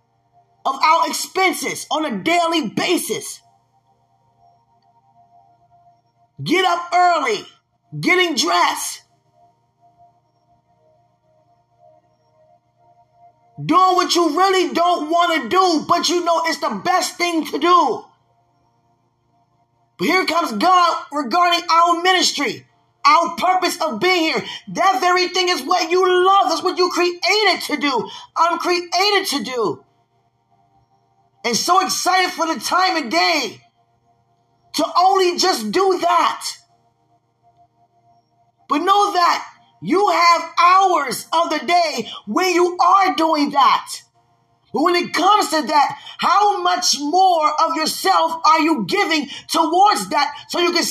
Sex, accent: male, American